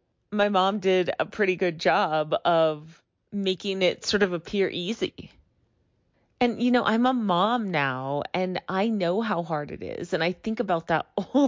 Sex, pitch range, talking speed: female, 155-200 Hz, 180 wpm